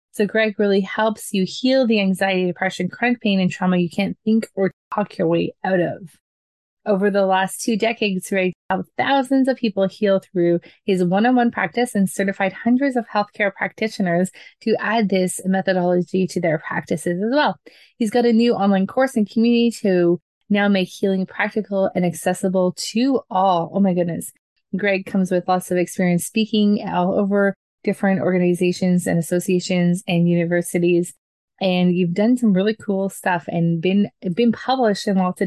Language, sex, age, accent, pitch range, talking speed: English, female, 20-39, American, 180-210 Hz, 175 wpm